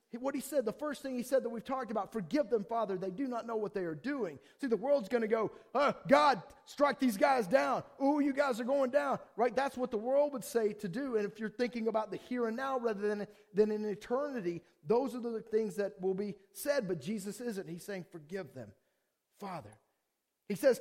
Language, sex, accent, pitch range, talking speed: English, male, American, 195-245 Hz, 240 wpm